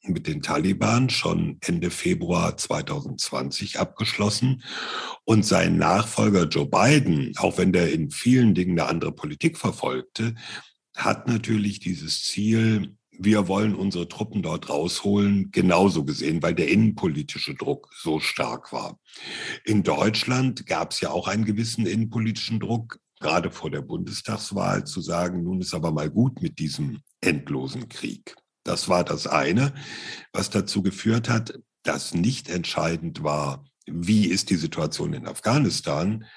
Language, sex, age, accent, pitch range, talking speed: German, male, 60-79, German, 95-115 Hz, 140 wpm